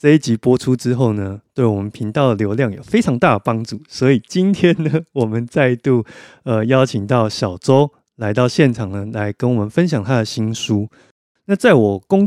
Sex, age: male, 30-49